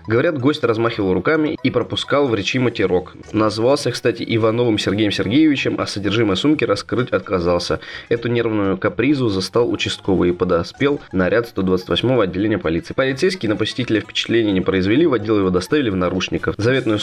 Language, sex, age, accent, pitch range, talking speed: Russian, male, 20-39, native, 95-125 Hz, 150 wpm